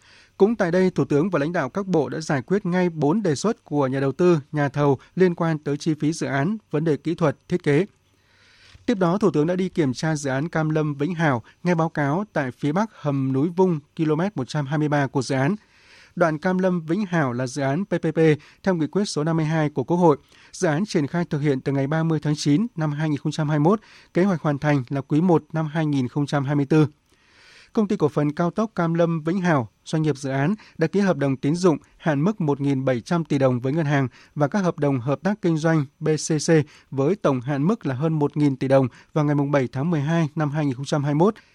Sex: male